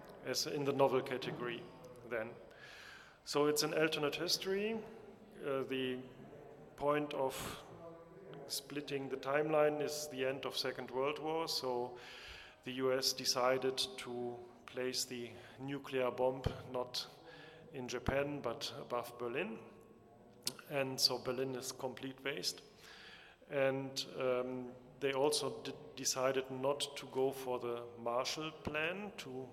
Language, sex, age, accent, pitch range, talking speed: Italian, male, 40-59, German, 125-145 Hz, 120 wpm